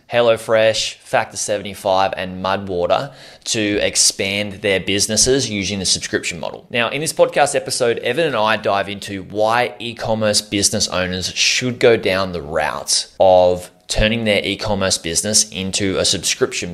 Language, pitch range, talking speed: English, 95-110 Hz, 145 wpm